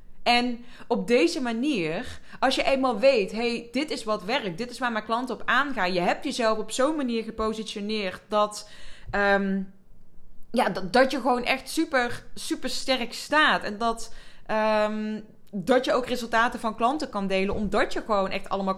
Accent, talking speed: Dutch, 180 wpm